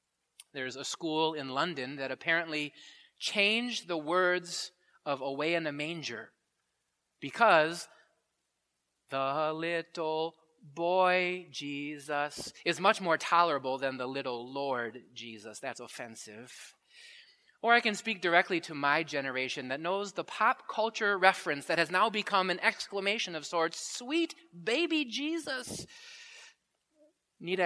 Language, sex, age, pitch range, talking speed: English, male, 30-49, 145-215 Hz, 125 wpm